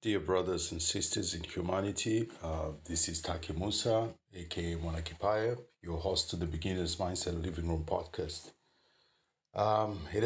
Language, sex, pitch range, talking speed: English, male, 80-95 Hz, 140 wpm